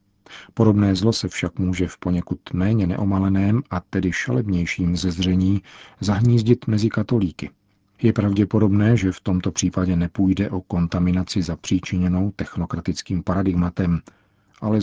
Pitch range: 90-105 Hz